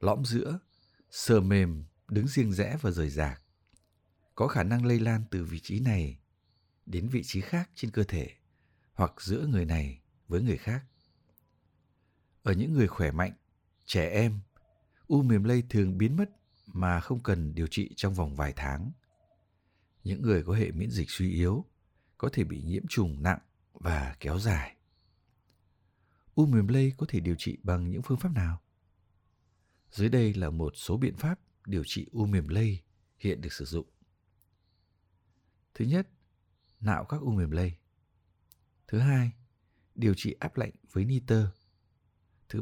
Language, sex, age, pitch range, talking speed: Vietnamese, male, 60-79, 90-115 Hz, 165 wpm